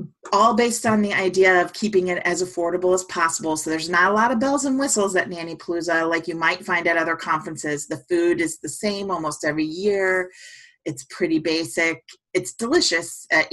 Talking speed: 200 wpm